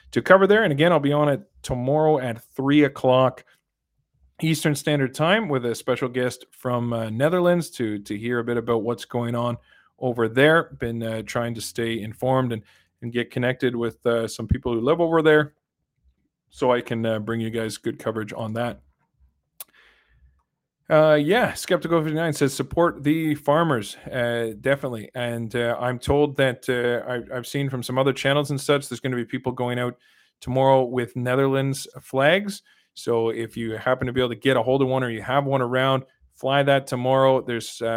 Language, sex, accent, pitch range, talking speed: English, male, American, 115-140 Hz, 190 wpm